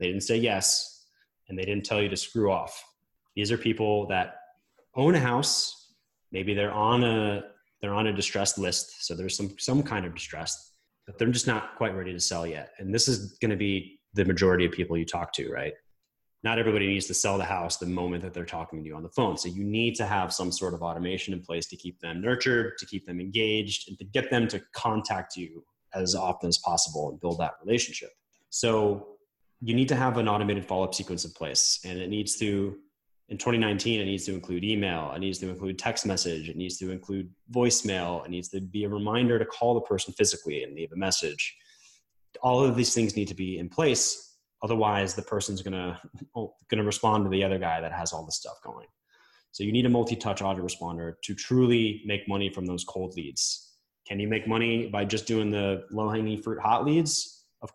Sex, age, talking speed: male, 20-39, 220 wpm